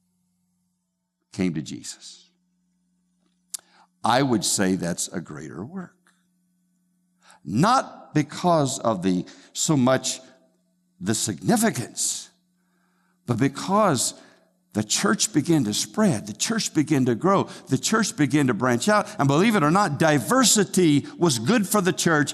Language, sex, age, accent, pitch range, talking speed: English, male, 60-79, American, 125-185 Hz, 125 wpm